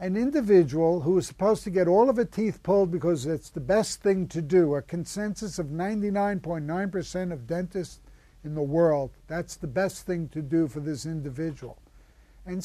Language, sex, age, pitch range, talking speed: English, male, 60-79, 160-205 Hz, 180 wpm